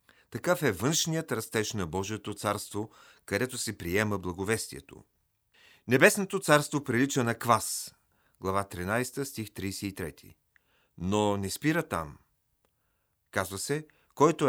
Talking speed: 110 wpm